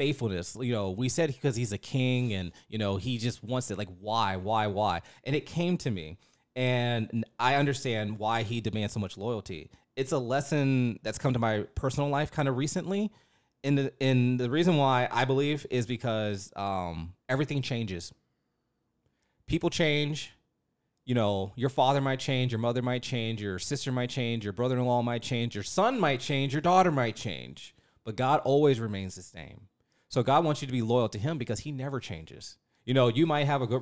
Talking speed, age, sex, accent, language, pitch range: 205 wpm, 30-49, male, American, English, 105-135 Hz